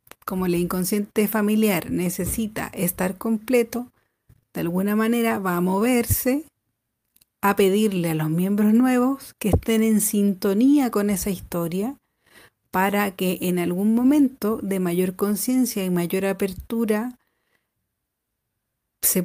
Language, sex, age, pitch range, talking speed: Spanish, female, 40-59, 180-220 Hz, 120 wpm